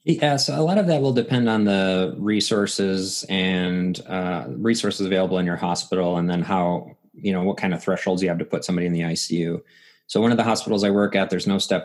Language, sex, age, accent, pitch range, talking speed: English, male, 20-39, American, 90-100 Hz, 235 wpm